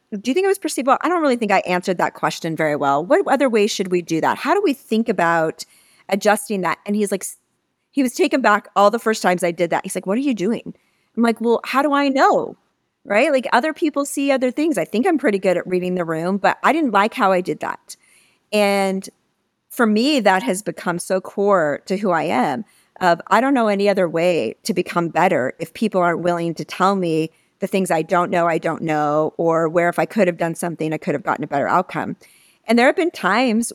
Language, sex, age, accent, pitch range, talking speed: English, female, 40-59, American, 170-225 Hz, 245 wpm